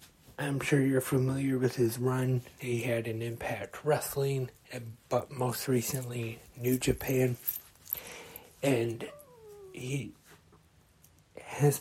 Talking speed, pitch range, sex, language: 100 wpm, 115-130 Hz, male, English